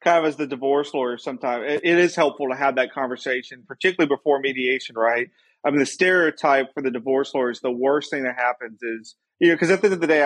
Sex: male